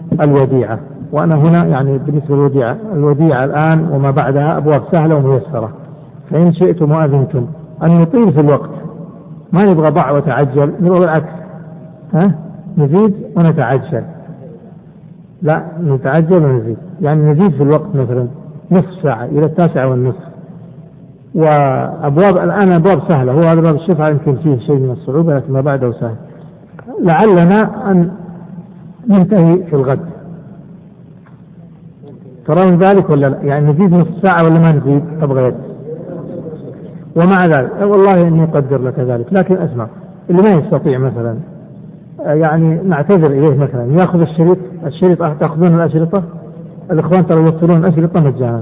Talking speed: 125 wpm